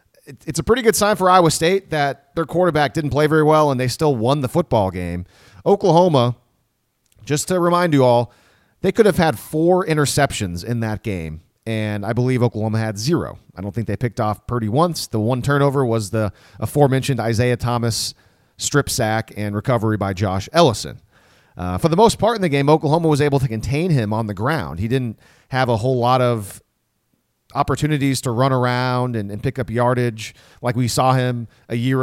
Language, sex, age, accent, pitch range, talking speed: English, male, 30-49, American, 110-145 Hz, 195 wpm